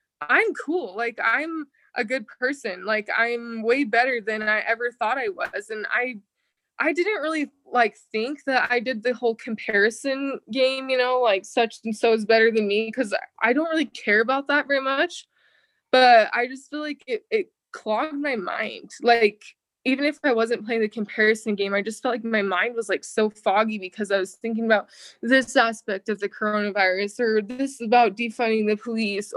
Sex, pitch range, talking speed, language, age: female, 215-265 Hz, 195 wpm, English, 20-39